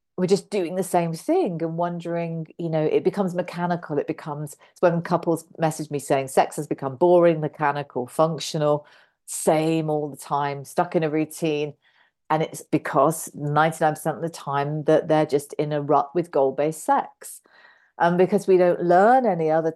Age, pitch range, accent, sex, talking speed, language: 40-59, 155-180 Hz, British, female, 180 wpm, English